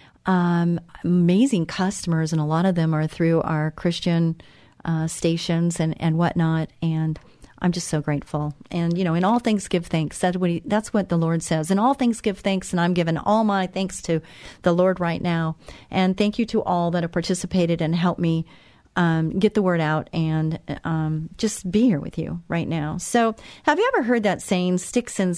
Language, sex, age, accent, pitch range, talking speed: English, female, 40-59, American, 170-215 Hz, 205 wpm